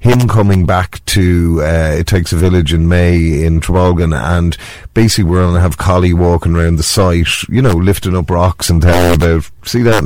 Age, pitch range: 30-49, 85-100 Hz